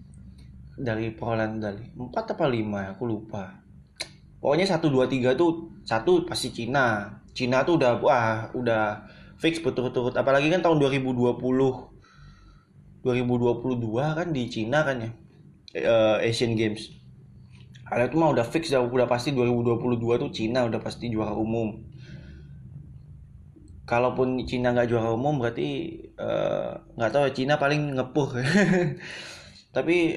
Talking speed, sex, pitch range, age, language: 125 wpm, male, 110-140 Hz, 20-39, Indonesian